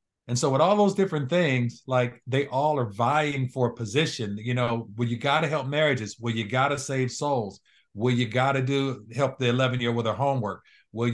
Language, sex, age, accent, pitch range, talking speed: English, male, 50-69, American, 115-135 Hz, 230 wpm